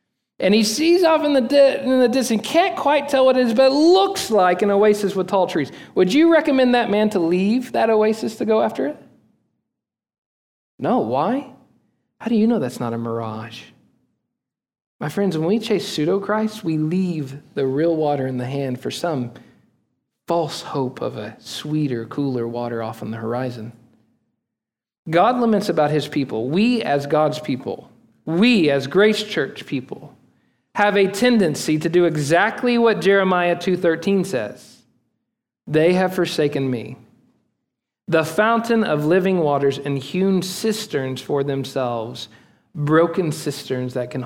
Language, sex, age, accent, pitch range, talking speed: English, male, 40-59, American, 140-220 Hz, 155 wpm